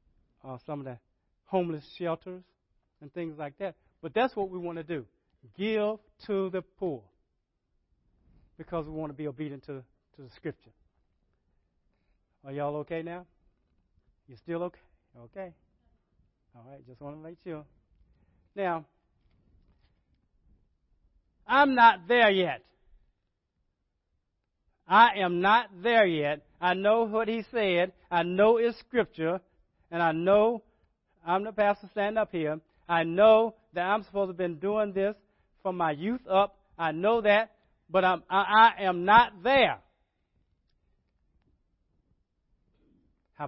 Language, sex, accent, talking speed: English, male, American, 135 wpm